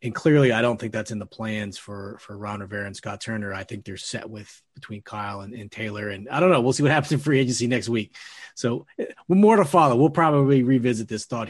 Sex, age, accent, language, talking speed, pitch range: male, 30-49, American, English, 255 wpm, 110-140 Hz